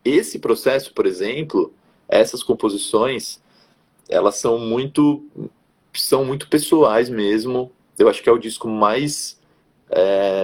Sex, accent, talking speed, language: male, Brazilian, 120 wpm, Portuguese